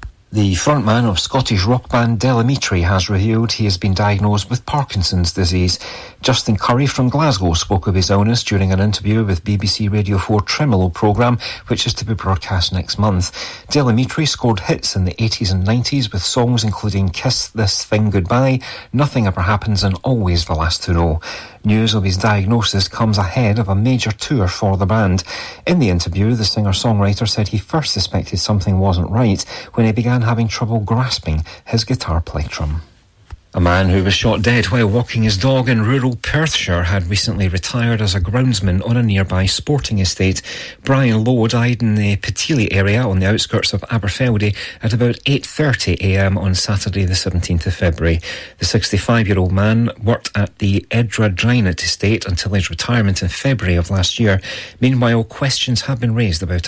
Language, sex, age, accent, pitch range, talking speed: English, male, 40-59, British, 95-120 Hz, 175 wpm